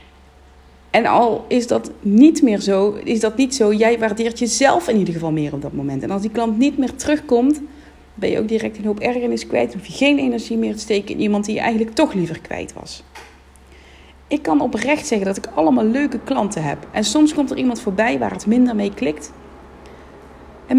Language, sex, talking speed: Dutch, female, 215 wpm